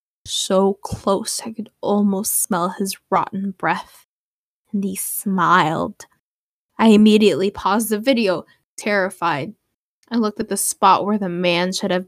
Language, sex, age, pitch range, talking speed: English, female, 10-29, 180-210 Hz, 140 wpm